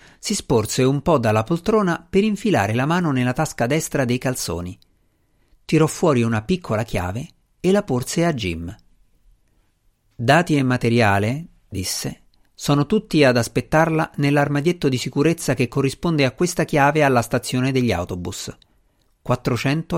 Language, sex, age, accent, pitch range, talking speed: Italian, male, 50-69, native, 105-155 Hz, 140 wpm